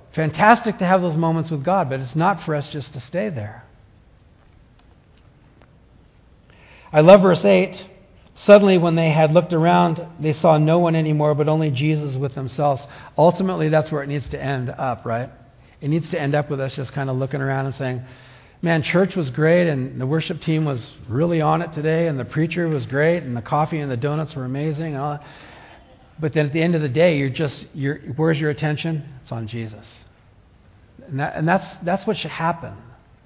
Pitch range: 130-165 Hz